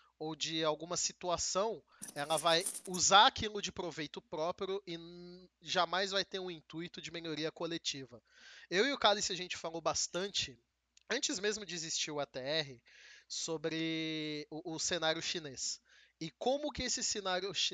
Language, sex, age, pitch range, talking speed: Portuguese, male, 20-39, 155-195 Hz, 150 wpm